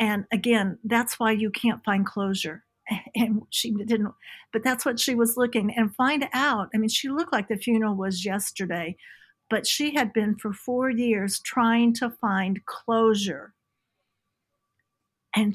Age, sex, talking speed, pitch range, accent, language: 50-69, female, 160 wpm, 205-245 Hz, American, English